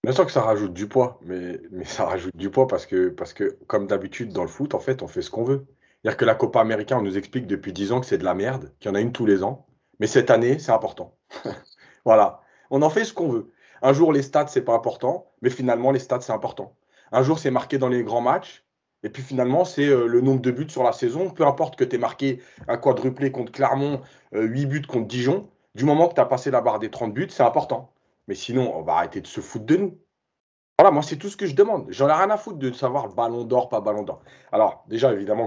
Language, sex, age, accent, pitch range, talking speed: French, male, 30-49, French, 115-155 Hz, 265 wpm